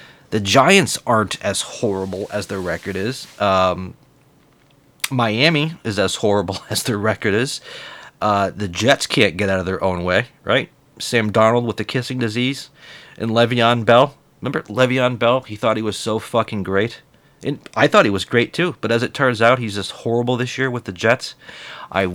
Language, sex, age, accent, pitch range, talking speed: English, male, 40-59, American, 105-130 Hz, 185 wpm